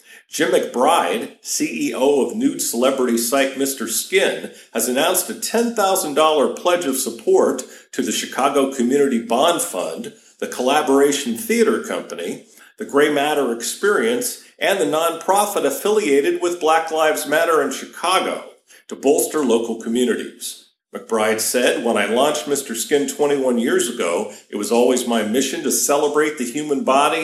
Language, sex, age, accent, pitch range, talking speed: English, male, 50-69, American, 125-175 Hz, 140 wpm